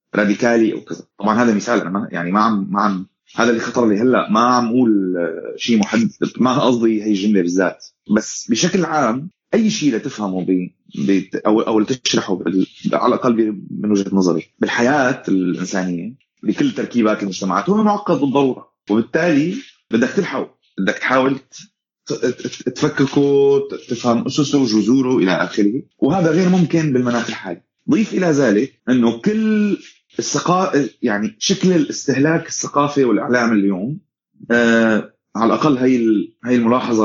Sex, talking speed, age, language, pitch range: male, 140 wpm, 30-49, Arabic, 105-150 Hz